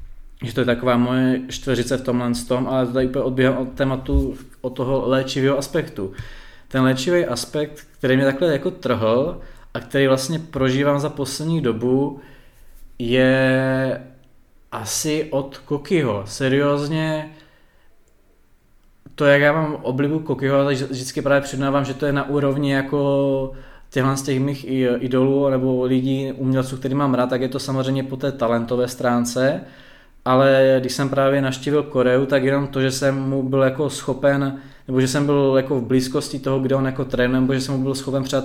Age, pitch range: 20-39, 130-140 Hz